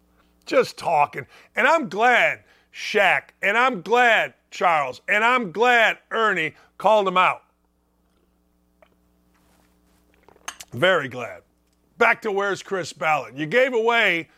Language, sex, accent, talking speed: English, male, American, 115 wpm